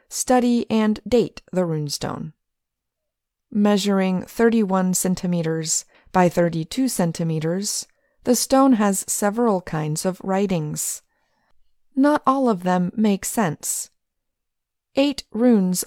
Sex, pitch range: female, 175-235 Hz